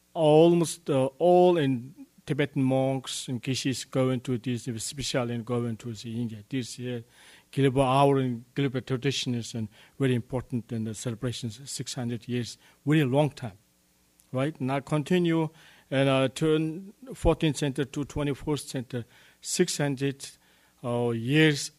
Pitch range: 115-140 Hz